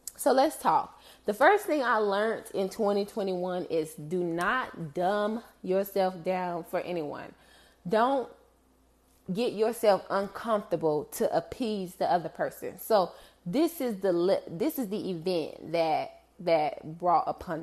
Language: English